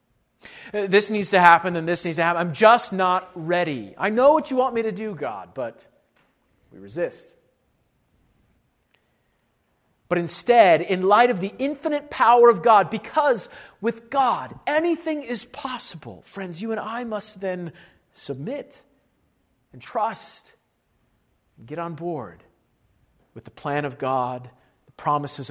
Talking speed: 145 wpm